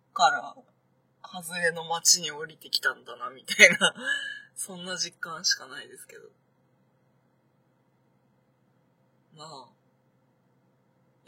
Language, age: Japanese, 20-39